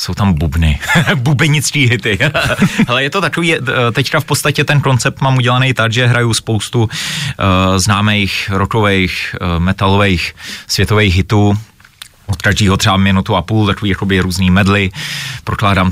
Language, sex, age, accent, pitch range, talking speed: Czech, male, 30-49, native, 95-125 Hz, 145 wpm